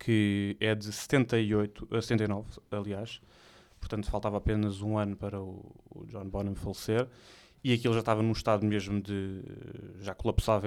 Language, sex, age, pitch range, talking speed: English, male, 20-39, 100-115 Hz, 165 wpm